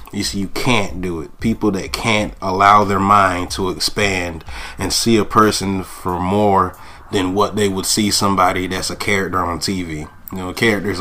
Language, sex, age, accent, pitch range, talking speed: English, male, 20-39, American, 90-105 Hz, 185 wpm